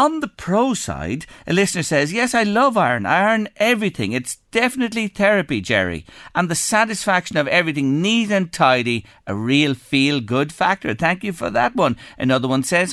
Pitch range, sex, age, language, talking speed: 130-200 Hz, male, 50-69, English, 180 wpm